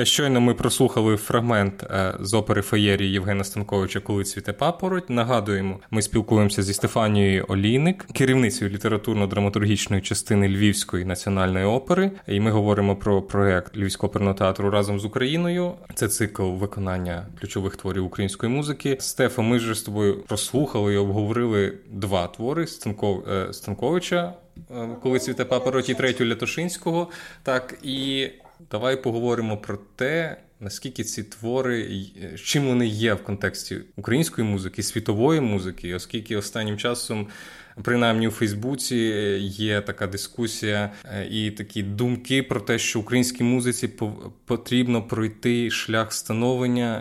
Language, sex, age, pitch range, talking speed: Ukrainian, male, 20-39, 100-125 Hz, 125 wpm